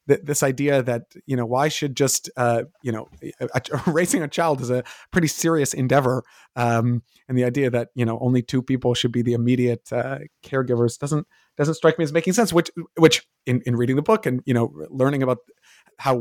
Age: 30-49